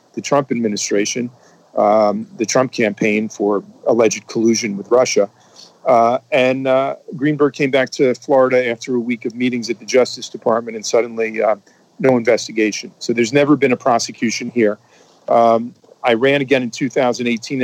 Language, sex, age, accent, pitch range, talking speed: English, male, 40-59, American, 115-130 Hz, 160 wpm